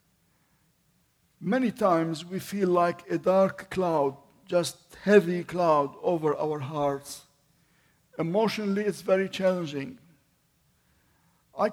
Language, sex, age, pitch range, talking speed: English, male, 50-69, 155-200 Hz, 95 wpm